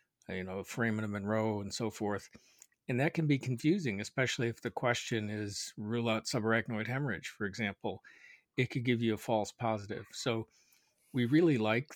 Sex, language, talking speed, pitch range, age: male, English, 180 wpm, 105-125 Hz, 50-69